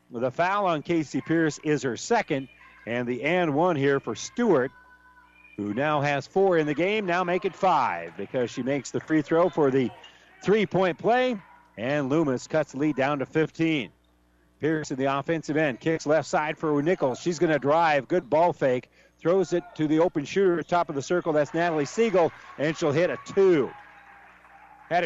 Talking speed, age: 195 wpm, 50-69